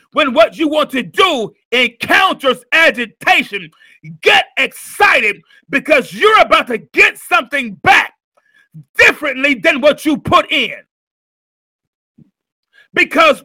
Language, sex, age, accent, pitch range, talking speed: English, male, 40-59, American, 250-350 Hz, 105 wpm